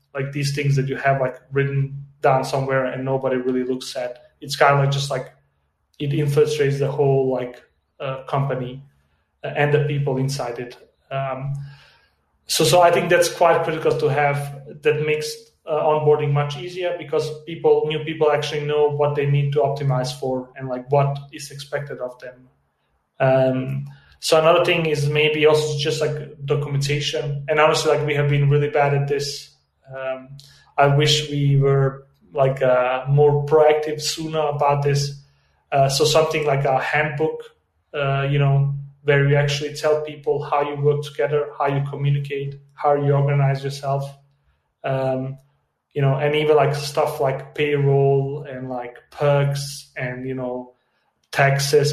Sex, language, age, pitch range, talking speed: male, English, 30-49, 135-150 Hz, 165 wpm